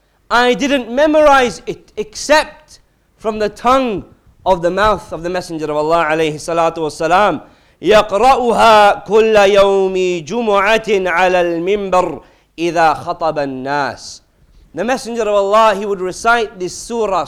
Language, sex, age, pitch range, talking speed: English, male, 40-59, 190-250 Hz, 85 wpm